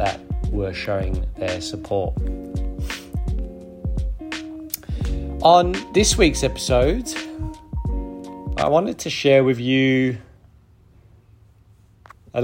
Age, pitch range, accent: 30-49, 95-115 Hz, British